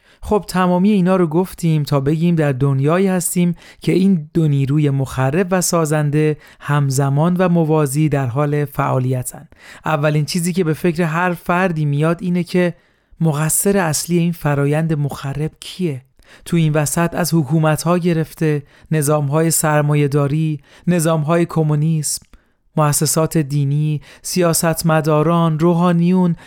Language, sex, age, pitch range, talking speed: Persian, male, 40-59, 145-170 Hz, 120 wpm